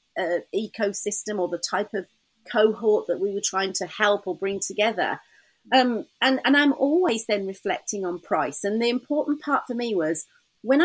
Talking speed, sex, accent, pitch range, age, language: 185 wpm, female, British, 195-250 Hz, 40-59, English